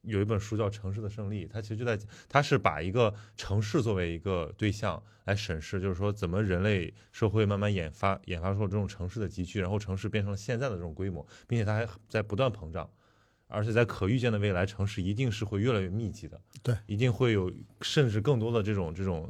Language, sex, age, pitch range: Chinese, male, 20-39, 95-115 Hz